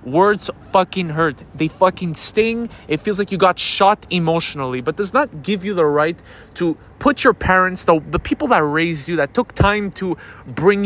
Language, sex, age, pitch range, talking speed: English, male, 20-39, 150-195 Hz, 195 wpm